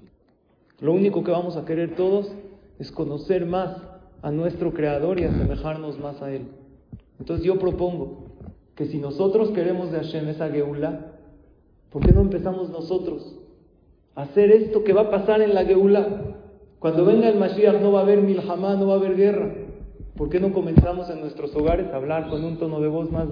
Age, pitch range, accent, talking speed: 40-59, 165-200 Hz, Mexican, 190 wpm